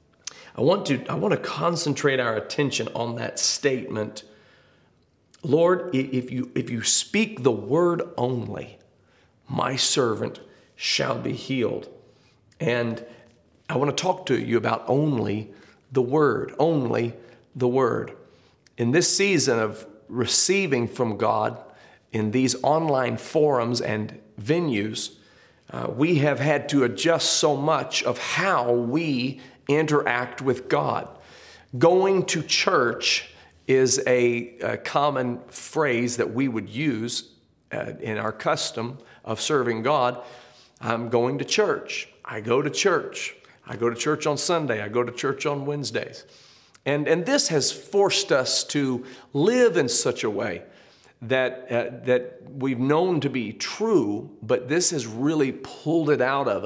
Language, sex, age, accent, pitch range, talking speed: English, male, 40-59, American, 120-150 Hz, 140 wpm